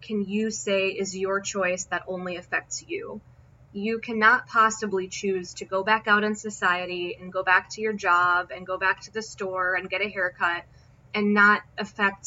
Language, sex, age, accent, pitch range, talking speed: English, female, 20-39, American, 185-220 Hz, 190 wpm